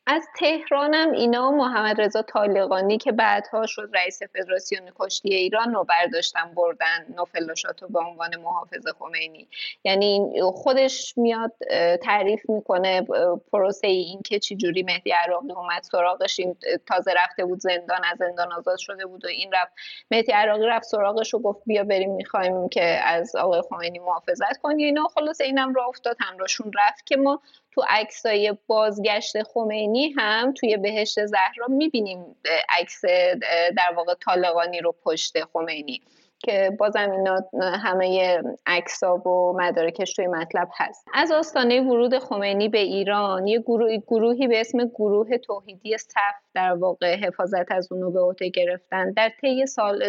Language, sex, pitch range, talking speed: Persian, female, 180-225 Hz, 145 wpm